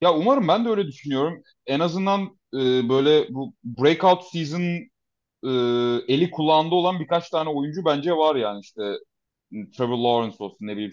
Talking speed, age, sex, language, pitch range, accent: 160 wpm, 30-49, male, Turkish, 125-180 Hz, native